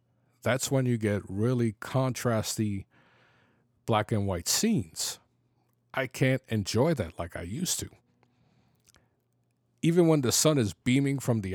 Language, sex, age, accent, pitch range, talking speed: English, male, 50-69, American, 110-130 Hz, 125 wpm